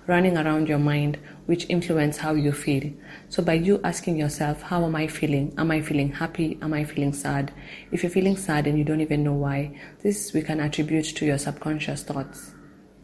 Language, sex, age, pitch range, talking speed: English, female, 30-49, 145-160 Hz, 200 wpm